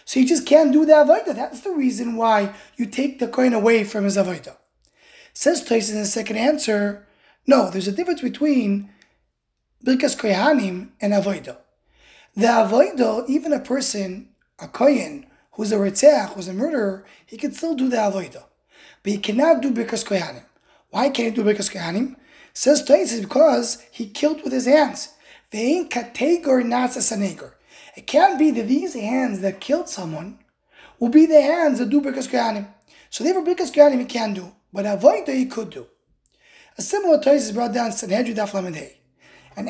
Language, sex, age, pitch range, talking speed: English, male, 20-39, 220-295 Hz, 170 wpm